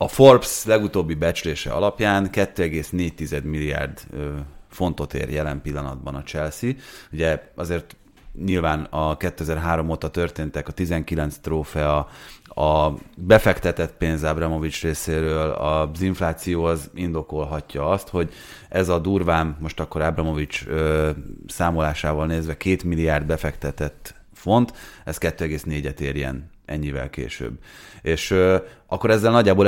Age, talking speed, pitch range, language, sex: 30-49, 115 wpm, 75-90 Hz, Hungarian, male